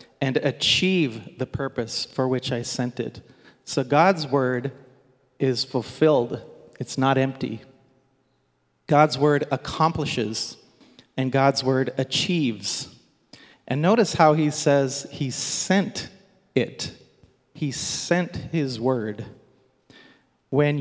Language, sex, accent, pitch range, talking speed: English, male, American, 125-150 Hz, 105 wpm